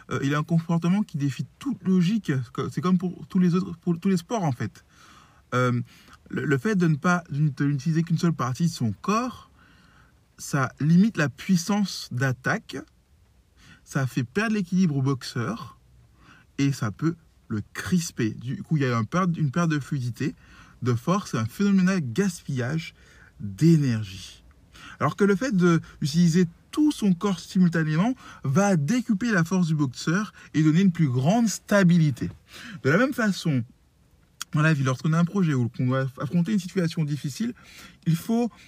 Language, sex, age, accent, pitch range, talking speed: French, male, 20-39, French, 140-195 Hz, 165 wpm